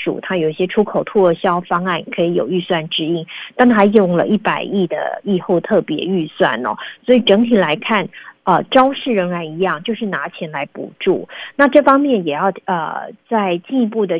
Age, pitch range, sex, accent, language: 30-49, 175-220 Hz, female, native, Chinese